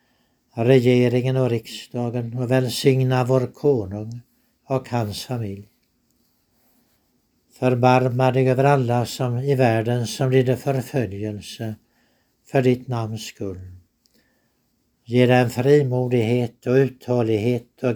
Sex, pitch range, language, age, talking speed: male, 110-130 Hz, Swedish, 60-79, 95 wpm